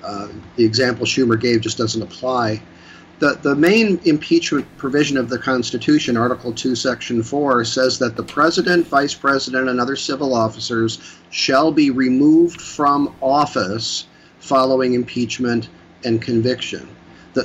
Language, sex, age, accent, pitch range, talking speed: English, male, 50-69, American, 120-145 Hz, 140 wpm